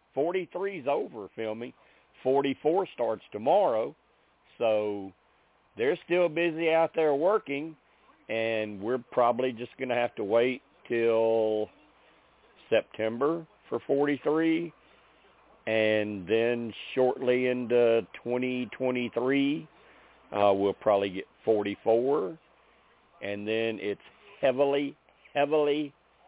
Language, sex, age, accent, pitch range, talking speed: English, male, 50-69, American, 105-130 Hz, 100 wpm